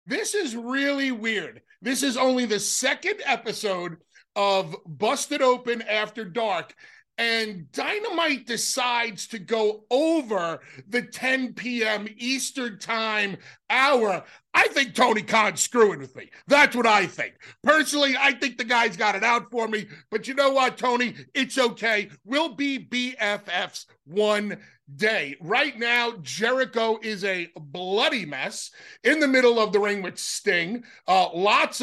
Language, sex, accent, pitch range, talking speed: English, male, American, 180-240 Hz, 145 wpm